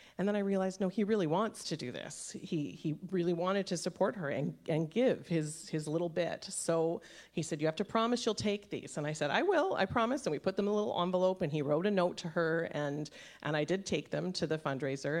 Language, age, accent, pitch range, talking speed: English, 40-59, American, 155-190 Hz, 260 wpm